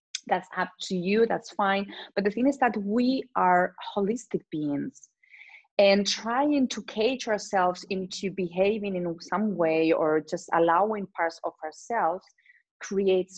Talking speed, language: 145 wpm, Spanish